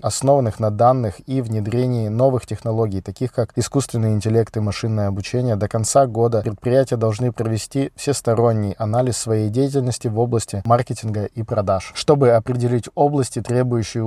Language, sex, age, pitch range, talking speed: Russian, male, 20-39, 105-125 Hz, 140 wpm